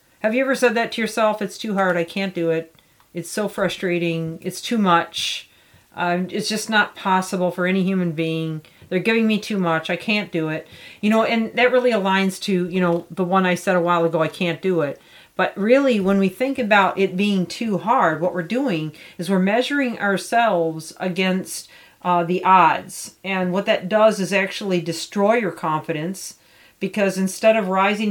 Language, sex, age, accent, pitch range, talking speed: English, female, 40-59, American, 175-210 Hz, 195 wpm